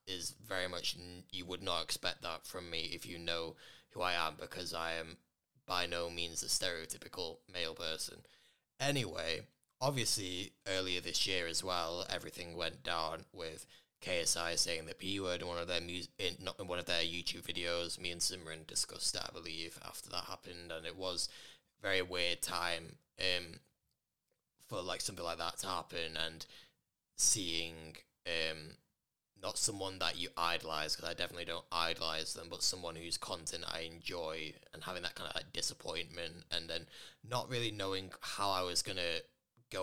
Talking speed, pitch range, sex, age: 180 wpm, 85-90 Hz, male, 20-39